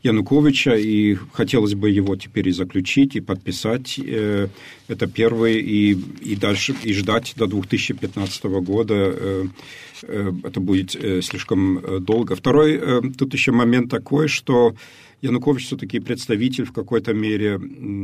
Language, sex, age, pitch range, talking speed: Ukrainian, male, 50-69, 95-120 Hz, 120 wpm